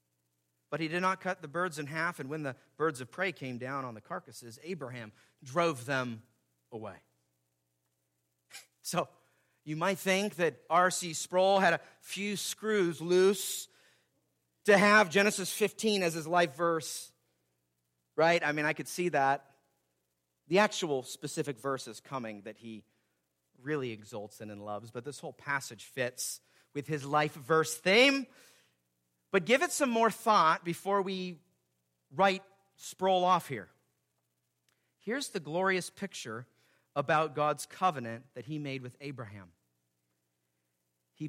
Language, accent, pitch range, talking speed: English, American, 110-180 Hz, 145 wpm